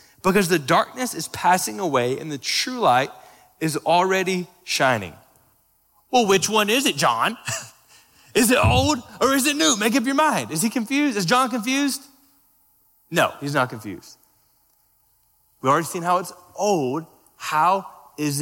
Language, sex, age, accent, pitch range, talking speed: English, male, 20-39, American, 160-220 Hz, 155 wpm